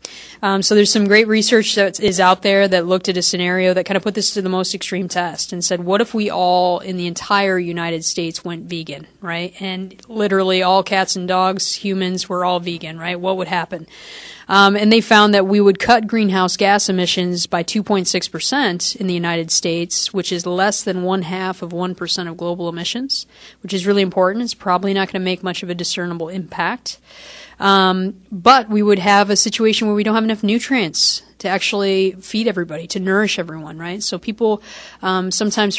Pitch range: 180-205 Hz